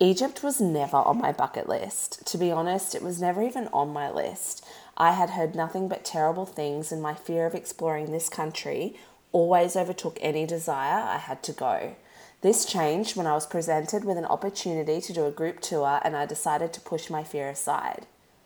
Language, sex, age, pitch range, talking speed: English, female, 20-39, 150-190 Hz, 200 wpm